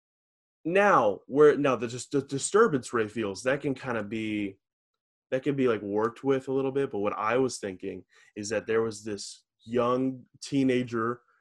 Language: English